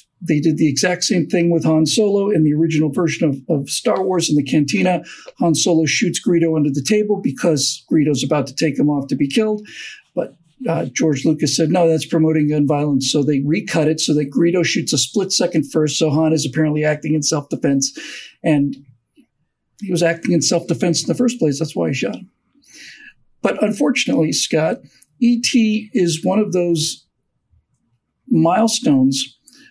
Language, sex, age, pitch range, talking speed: English, male, 50-69, 150-215 Hz, 180 wpm